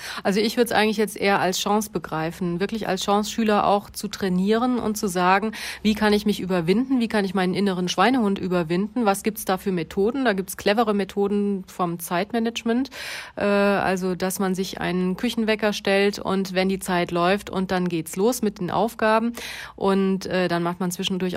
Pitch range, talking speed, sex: 185-210 Hz, 195 wpm, female